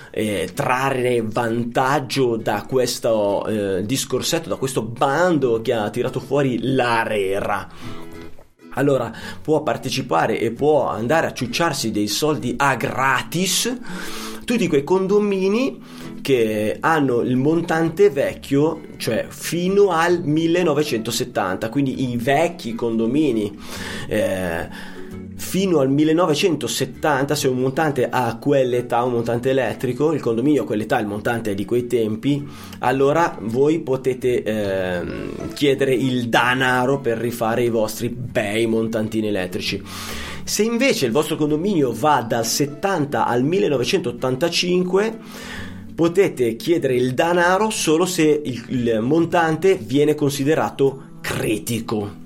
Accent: native